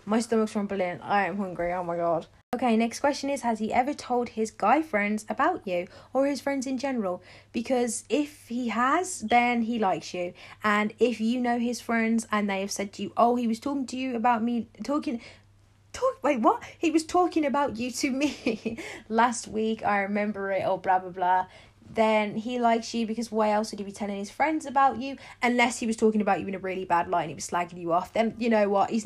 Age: 20-39